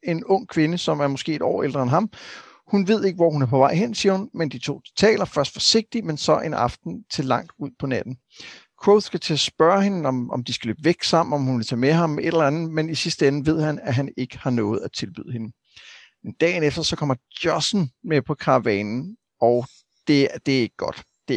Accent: native